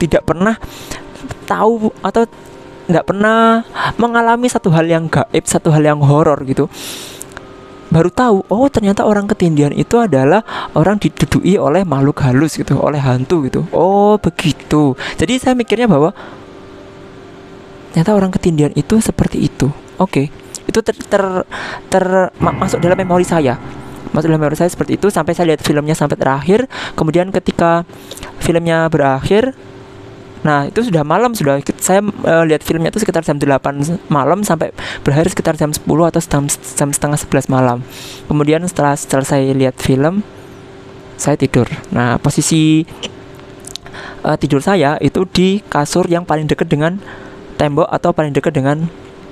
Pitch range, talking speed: 135-185 Hz, 145 wpm